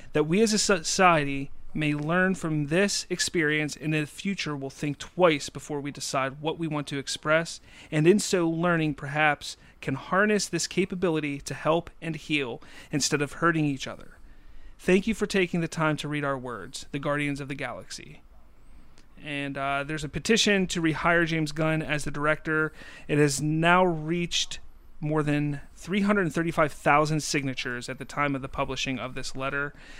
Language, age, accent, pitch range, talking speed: English, 30-49, American, 140-170 Hz, 180 wpm